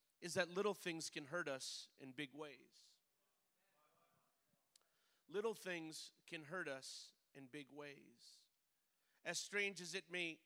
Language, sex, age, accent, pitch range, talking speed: English, male, 40-59, American, 155-195 Hz, 130 wpm